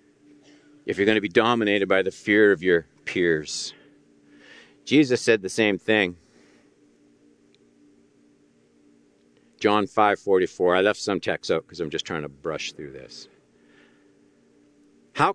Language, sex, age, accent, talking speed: English, male, 50-69, American, 135 wpm